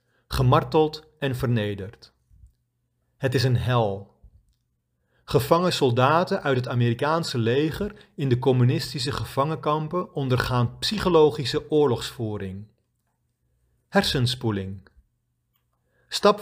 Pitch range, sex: 115-165 Hz, male